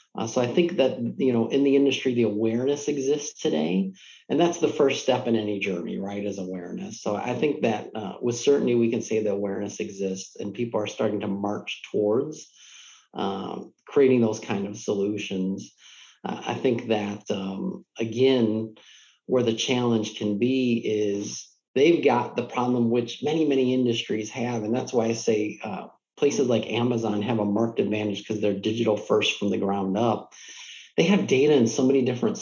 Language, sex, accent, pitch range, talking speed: English, male, American, 105-130 Hz, 185 wpm